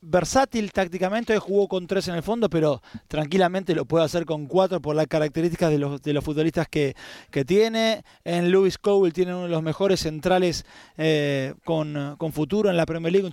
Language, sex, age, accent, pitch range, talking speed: Spanish, male, 20-39, Argentinian, 155-190 Hz, 200 wpm